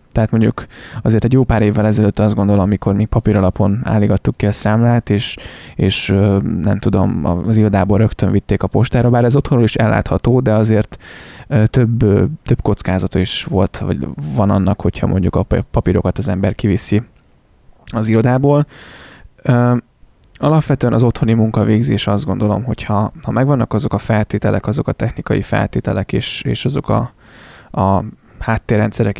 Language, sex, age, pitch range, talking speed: Hungarian, male, 20-39, 100-120 Hz, 150 wpm